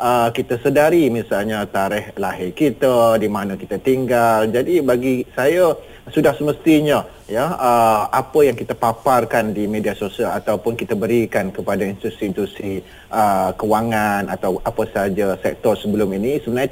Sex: male